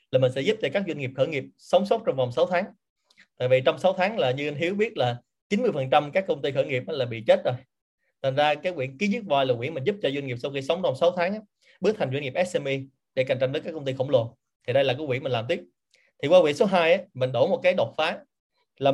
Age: 20-39